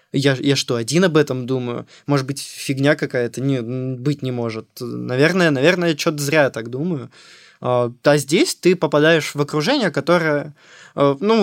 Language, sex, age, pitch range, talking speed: Russian, male, 20-39, 135-160 Hz, 155 wpm